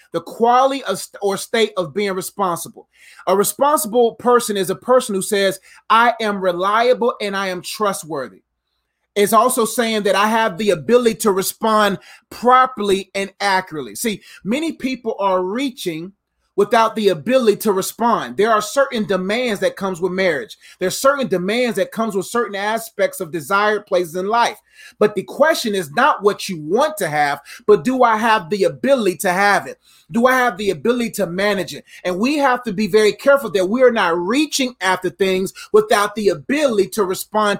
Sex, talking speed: male, 180 wpm